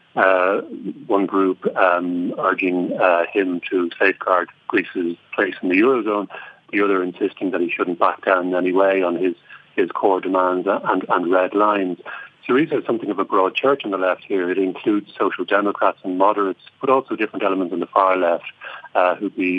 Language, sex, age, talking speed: English, male, 50-69, 190 wpm